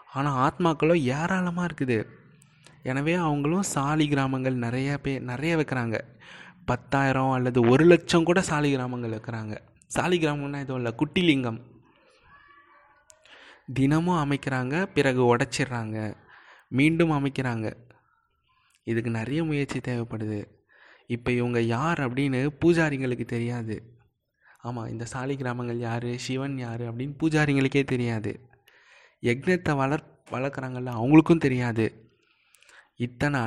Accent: native